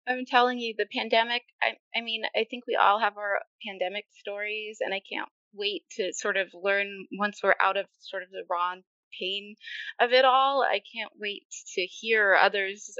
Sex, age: female, 20-39